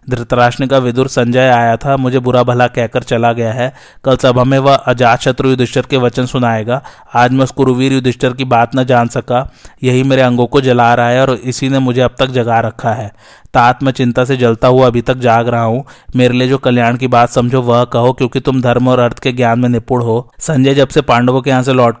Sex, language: male, Hindi